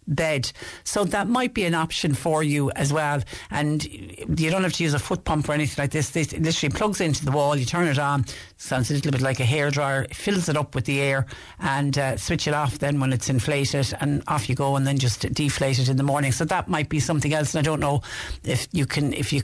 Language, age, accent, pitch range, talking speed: English, 60-79, Irish, 130-155 Hz, 260 wpm